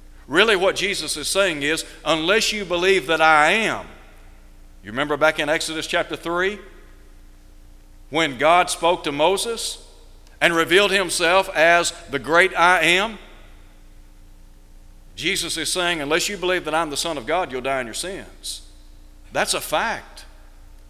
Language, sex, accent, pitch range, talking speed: English, male, American, 140-180 Hz, 150 wpm